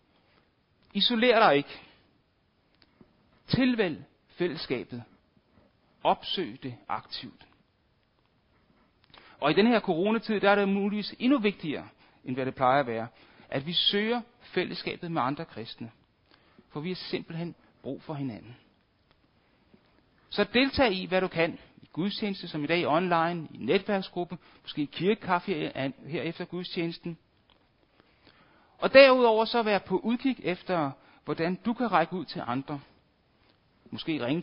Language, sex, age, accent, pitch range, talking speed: Danish, male, 60-79, native, 135-200 Hz, 130 wpm